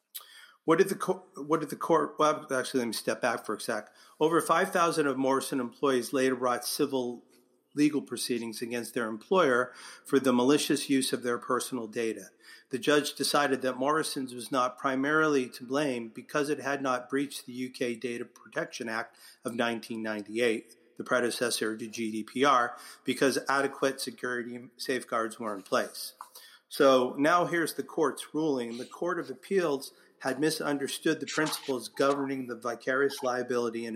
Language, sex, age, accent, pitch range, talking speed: English, male, 40-59, American, 120-140 Hz, 155 wpm